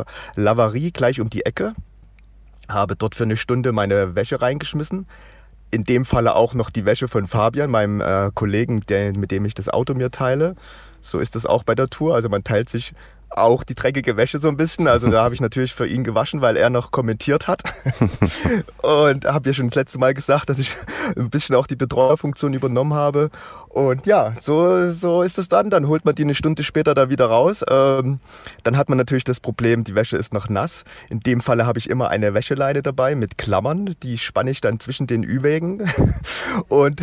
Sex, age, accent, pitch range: male, 30-49, German, 115-145 Hz